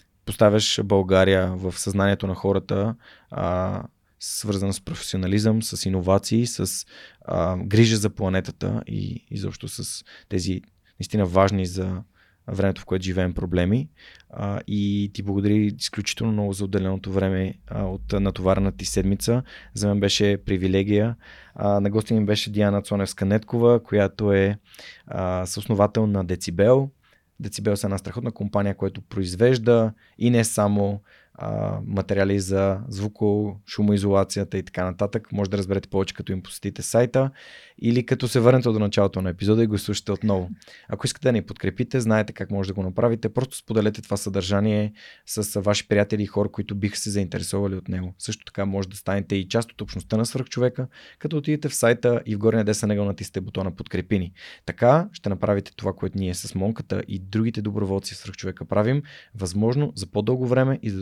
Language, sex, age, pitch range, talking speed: Bulgarian, male, 20-39, 95-110 Hz, 160 wpm